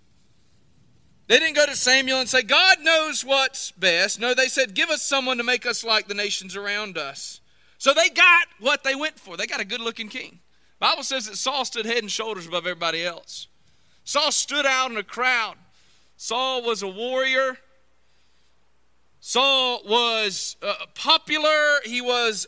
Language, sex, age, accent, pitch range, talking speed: English, male, 40-59, American, 200-270 Hz, 170 wpm